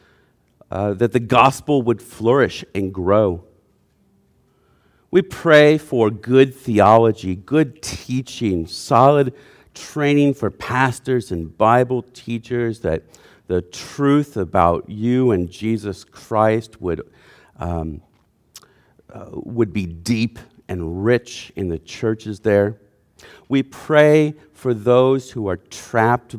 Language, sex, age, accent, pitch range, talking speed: English, male, 50-69, American, 90-125 Hz, 110 wpm